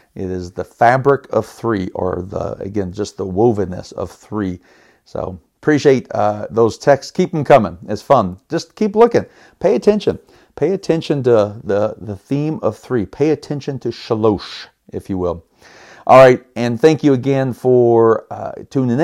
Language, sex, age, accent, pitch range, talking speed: English, male, 50-69, American, 105-125 Hz, 165 wpm